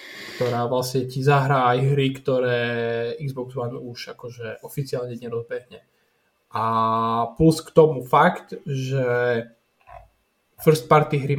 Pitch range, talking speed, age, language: 125-150 Hz, 110 wpm, 20-39, Slovak